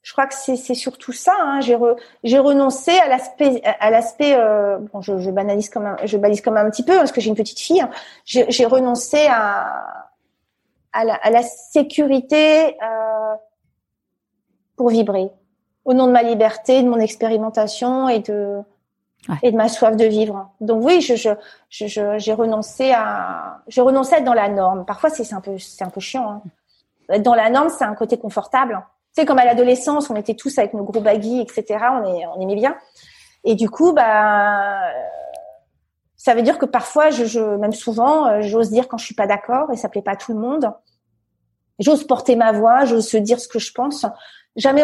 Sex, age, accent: female, 40-59, French